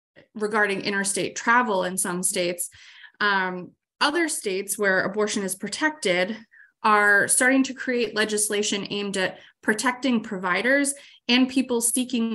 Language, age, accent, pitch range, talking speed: English, 20-39, American, 190-230 Hz, 120 wpm